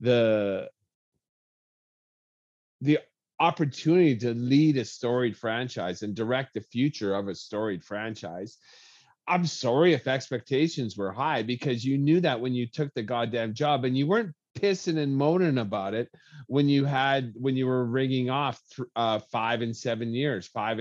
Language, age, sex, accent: English, 40-59, male, American